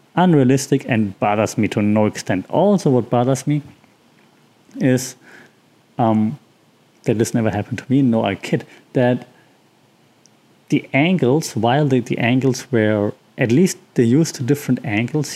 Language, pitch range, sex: English, 110-135 Hz, male